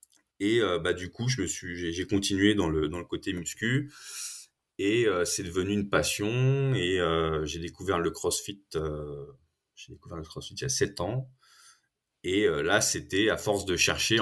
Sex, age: male, 30-49